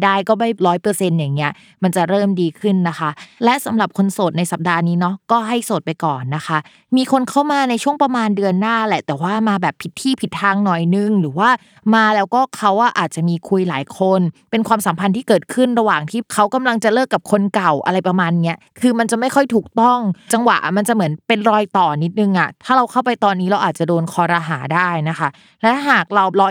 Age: 20-39